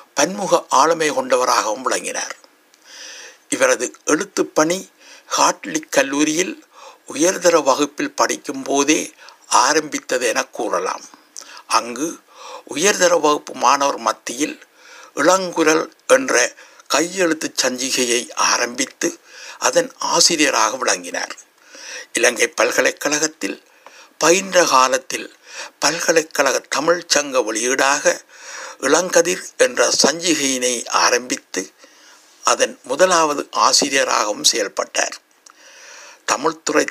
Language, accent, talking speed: Tamil, native, 70 wpm